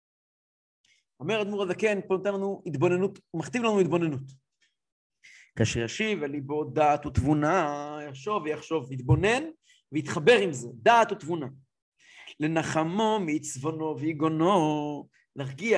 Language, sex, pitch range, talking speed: English, male, 155-205 Hz, 100 wpm